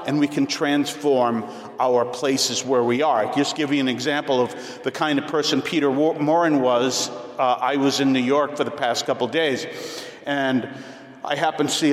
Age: 50-69